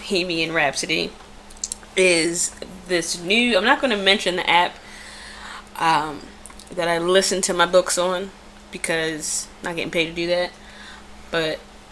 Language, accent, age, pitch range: English, American, 10-29, 170-205 Hz